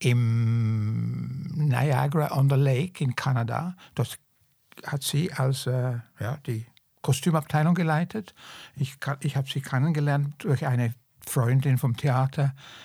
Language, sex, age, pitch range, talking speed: German, male, 60-79, 130-150 Hz, 115 wpm